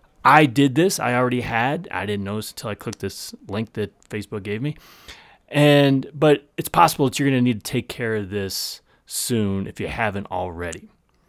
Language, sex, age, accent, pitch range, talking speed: English, male, 30-49, American, 110-150 Hz, 195 wpm